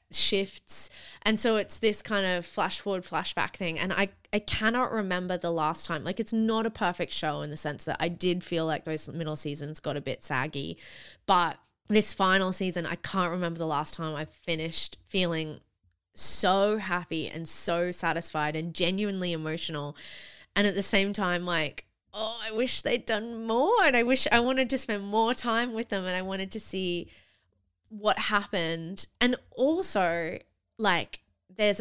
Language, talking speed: English, 180 wpm